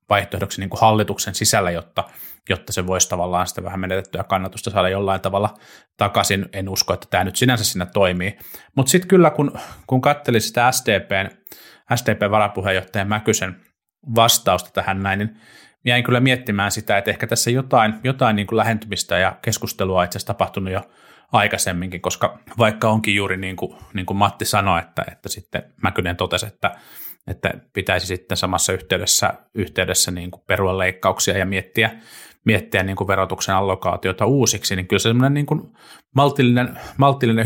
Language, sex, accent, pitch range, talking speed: Finnish, male, native, 95-115 Hz, 160 wpm